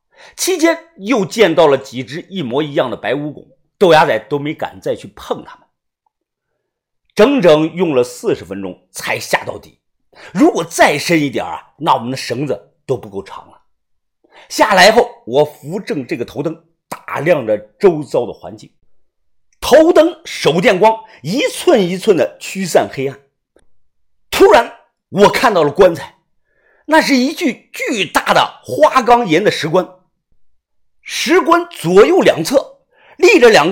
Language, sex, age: Chinese, male, 50-69